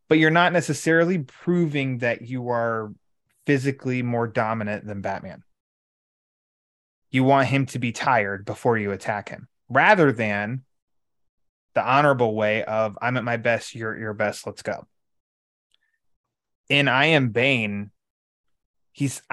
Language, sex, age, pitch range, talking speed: English, male, 20-39, 110-140 Hz, 135 wpm